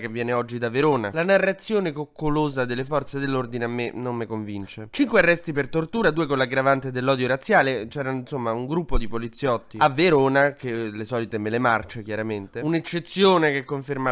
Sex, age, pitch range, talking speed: male, 20-39, 115-145 Hz, 180 wpm